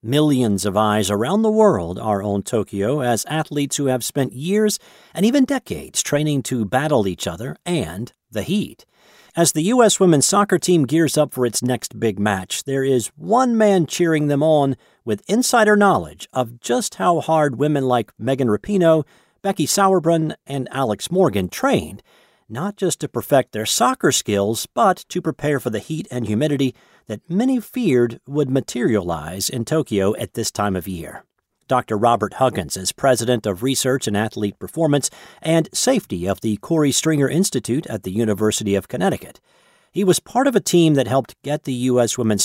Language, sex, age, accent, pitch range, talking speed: English, male, 40-59, American, 115-170 Hz, 175 wpm